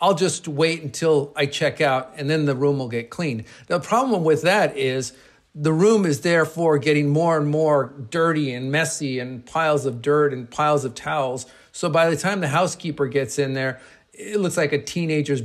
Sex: male